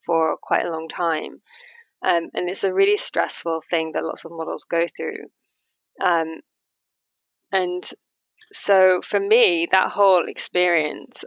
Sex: female